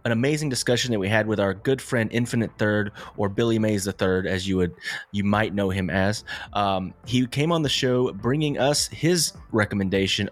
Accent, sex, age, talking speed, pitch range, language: American, male, 30-49, 205 wpm, 95-125 Hz, English